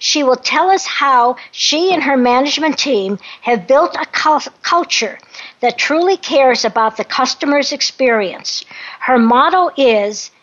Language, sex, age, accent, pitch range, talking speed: English, female, 60-79, American, 255-330 Hz, 140 wpm